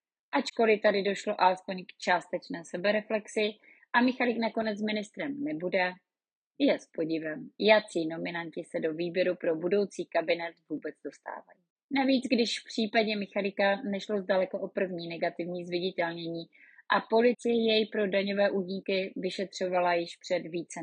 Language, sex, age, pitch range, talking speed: Czech, female, 20-39, 180-215 Hz, 135 wpm